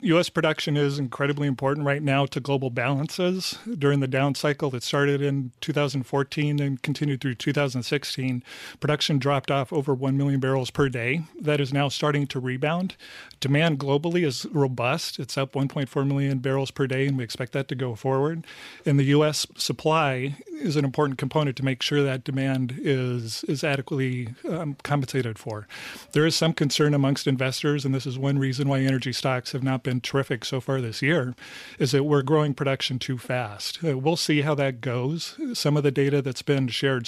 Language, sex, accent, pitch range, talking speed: English, male, American, 135-150 Hz, 190 wpm